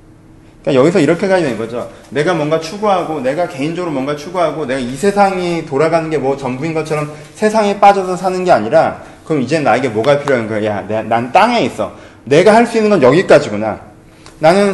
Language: Korean